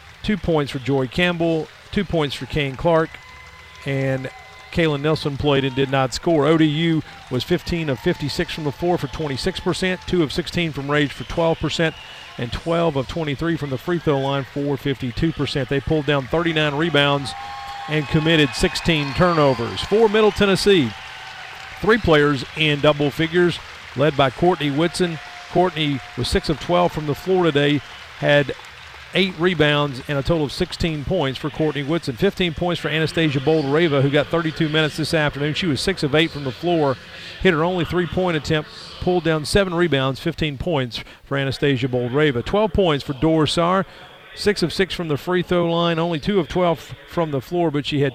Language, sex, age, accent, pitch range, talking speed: English, male, 40-59, American, 140-175 Hz, 180 wpm